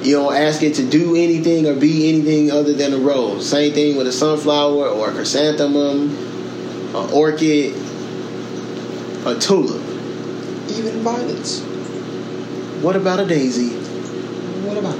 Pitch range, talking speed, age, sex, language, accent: 125-150 Hz, 135 wpm, 20-39, male, English, American